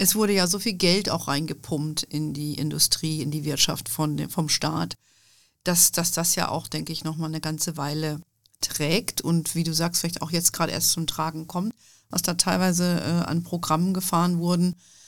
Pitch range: 160-180 Hz